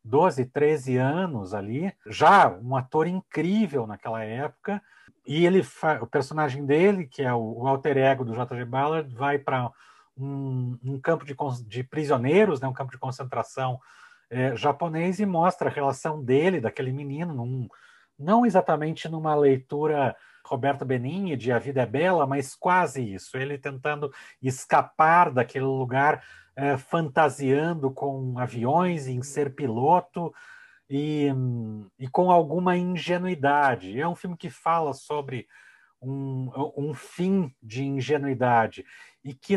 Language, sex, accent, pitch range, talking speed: Portuguese, male, Brazilian, 130-170 Hz, 140 wpm